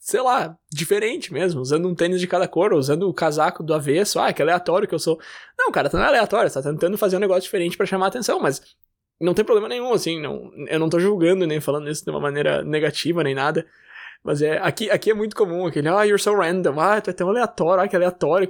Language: Portuguese